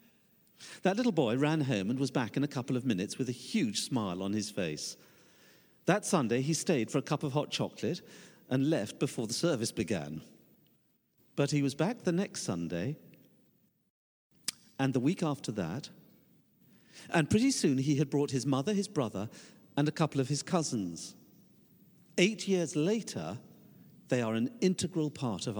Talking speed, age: 170 wpm, 50-69